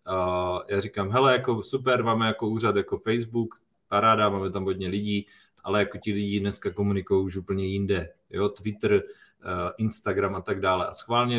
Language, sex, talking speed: Czech, male, 175 wpm